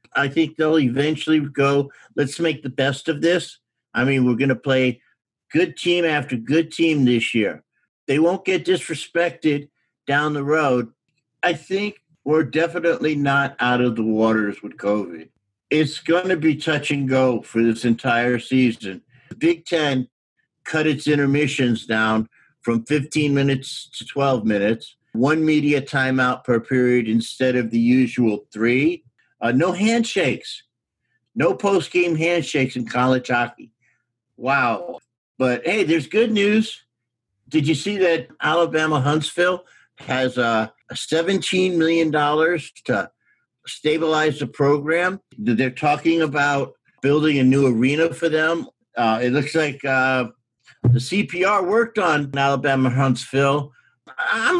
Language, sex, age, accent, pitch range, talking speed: English, male, 50-69, American, 125-165 Hz, 135 wpm